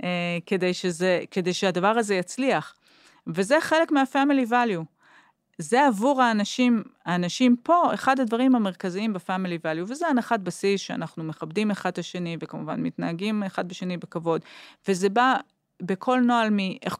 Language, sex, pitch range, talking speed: Hebrew, female, 170-235 Hz, 135 wpm